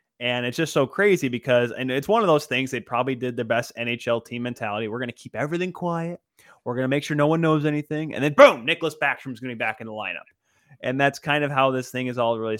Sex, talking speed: male, 275 wpm